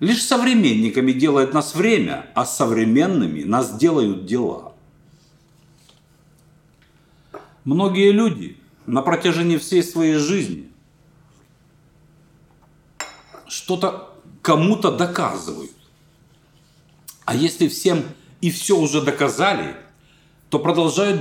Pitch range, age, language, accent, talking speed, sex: 155-205 Hz, 50-69, Russian, native, 80 wpm, male